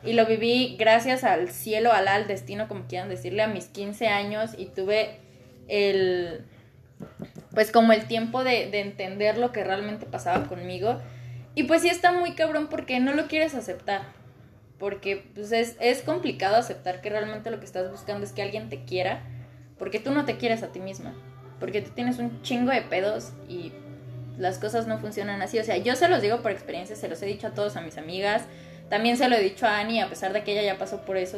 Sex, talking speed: female, 215 wpm